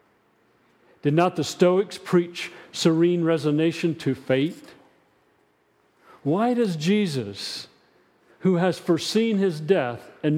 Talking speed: 105 wpm